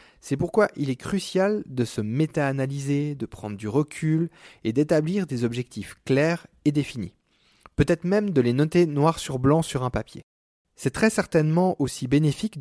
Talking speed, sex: 165 wpm, male